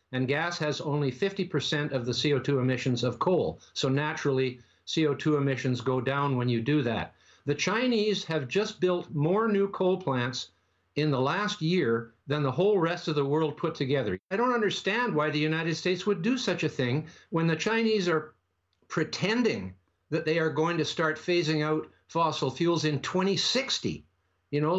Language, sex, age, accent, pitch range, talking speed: English, male, 60-79, American, 140-180 Hz, 180 wpm